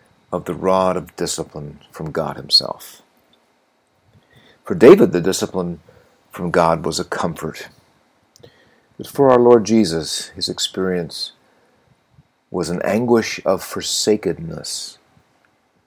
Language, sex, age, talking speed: English, male, 50-69, 110 wpm